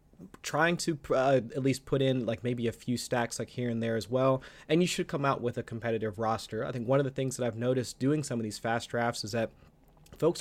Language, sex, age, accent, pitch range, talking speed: English, male, 30-49, American, 115-135 Hz, 260 wpm